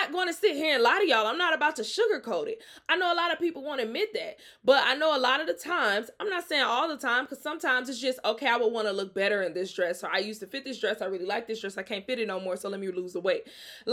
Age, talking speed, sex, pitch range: 20-39, 320 wpm, female, 210-265 Hz